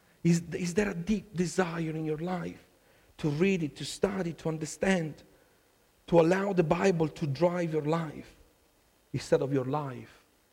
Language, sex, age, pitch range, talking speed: English, male, 50-69, 145-190 Hz, 160 wpm